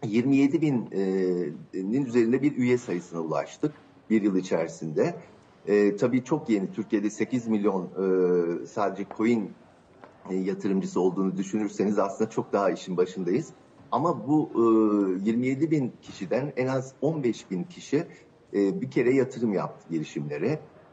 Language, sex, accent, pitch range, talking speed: Turkish, male, native, 95-130 Hz, 135 wpm